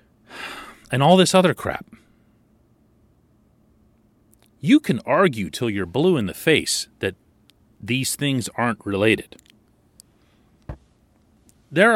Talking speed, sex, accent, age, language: 100 wpm, male, American, 40-59, English